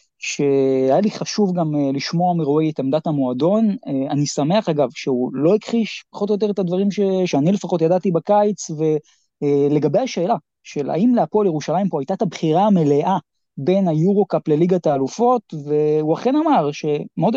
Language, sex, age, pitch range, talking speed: Hebrew, male, 20-39, 150-220 Hz, 150 wpm